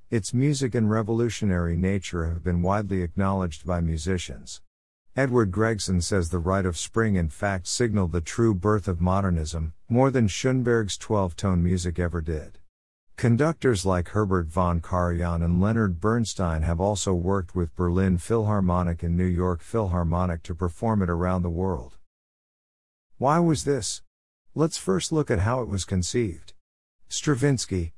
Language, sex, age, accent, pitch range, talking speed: English, male, 50-69, American, 85-110 Hz, 150 wpm